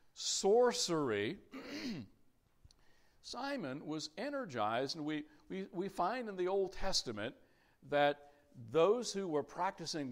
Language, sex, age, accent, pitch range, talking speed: English, male, 60-79, American, 145-225 Hz, 105 wpm